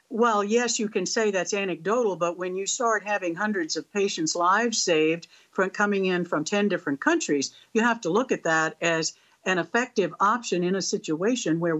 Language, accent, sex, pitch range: English, American, female, 165-225 Hz